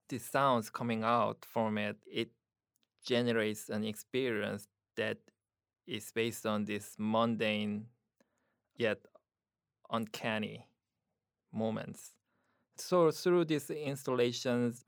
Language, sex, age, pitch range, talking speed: English, male, 20-39, 105-125 Hz, 95 wpm